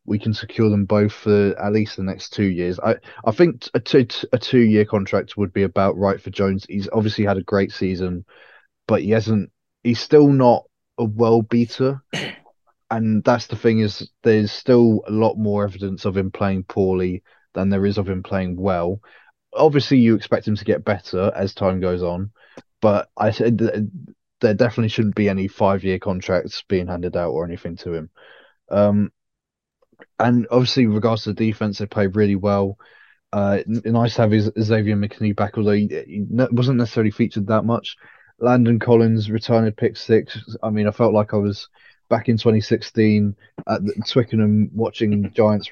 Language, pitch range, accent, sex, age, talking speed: English, 100-115 Hz, British, male, 20-39, 185 wpm